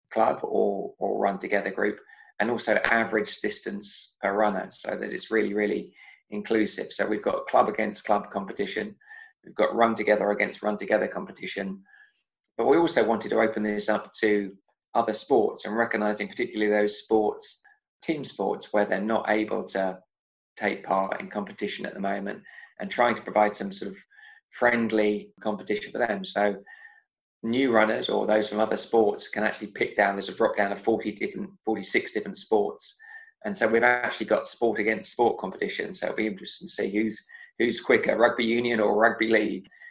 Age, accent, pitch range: 20-39, British, 105-120 Hz